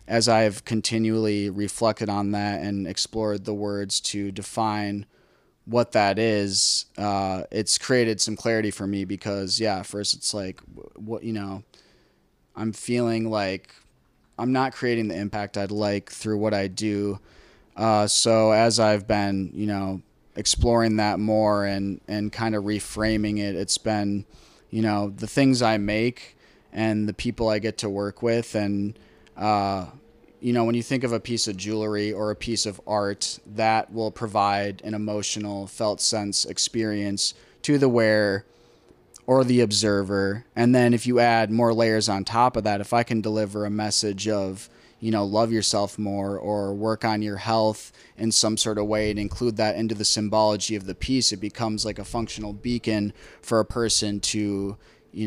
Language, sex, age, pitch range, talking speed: English, male, 20-39, 100-115 Hz, 175 wpm